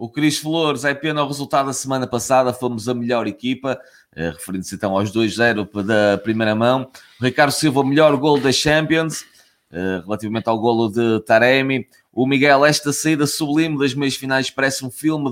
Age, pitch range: 20-39, 115-145 Hz